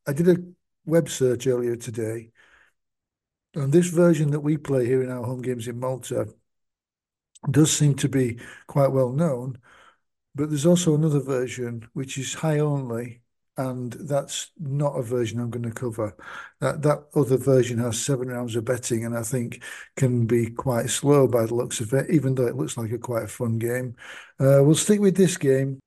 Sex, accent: male, British